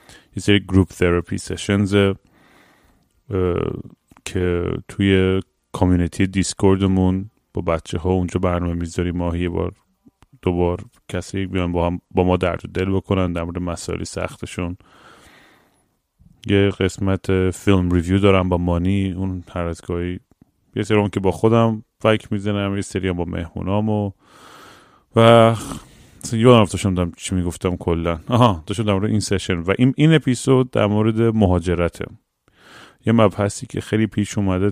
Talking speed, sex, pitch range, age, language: 130 wpm, male, 90-105 Hz, 30-49, Persian